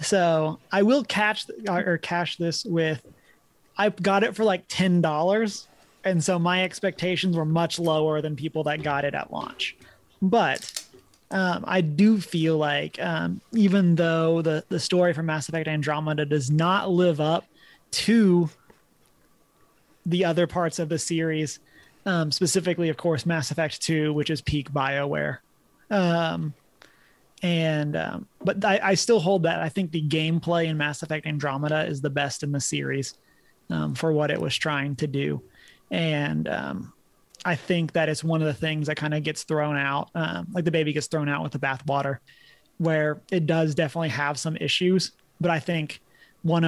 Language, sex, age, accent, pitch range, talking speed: English, male, 30-49, American, 150-175 Hz, 175 wpm